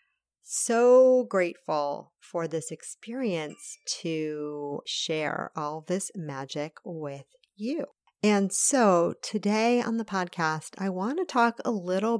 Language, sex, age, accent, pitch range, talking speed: English, female, 40-59, American, 165-220 Hz, 120 wpm